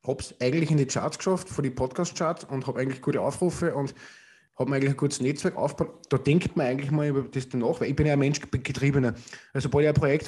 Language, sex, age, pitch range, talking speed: German, male, 20-39, 130-150 Hz, 255 wpm